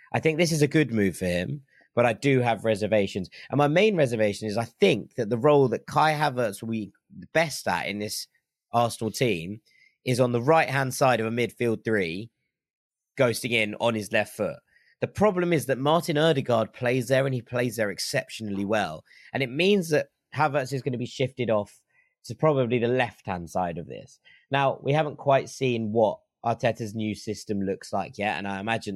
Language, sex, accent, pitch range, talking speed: English, male, British, 110-140 Hz, 205 wpm